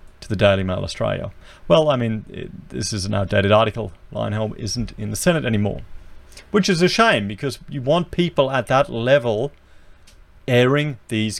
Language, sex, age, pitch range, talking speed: English, male, 40-59, 95-145 Hz, 170 wpm